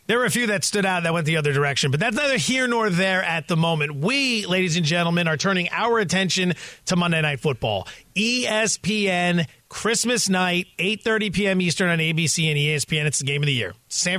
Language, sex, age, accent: English, male, 30-49, American